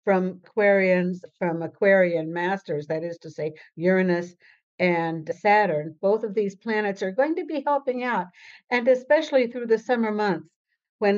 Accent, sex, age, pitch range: American, female, 60-79, 175-220 Hz